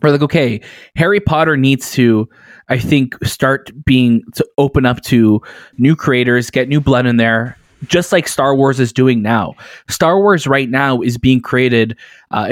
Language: English